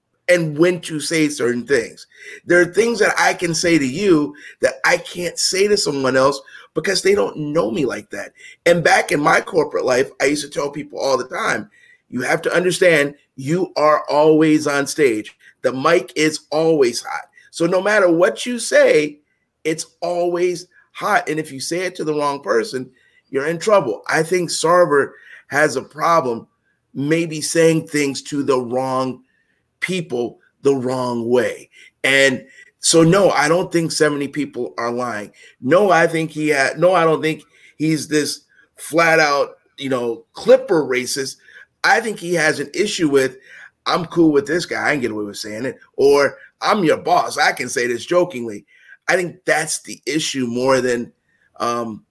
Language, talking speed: English, 180 wpm